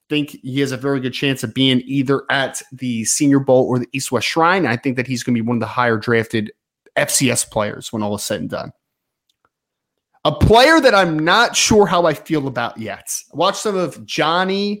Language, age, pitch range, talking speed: English, 30-49, 120-180 Hz, 225 wpm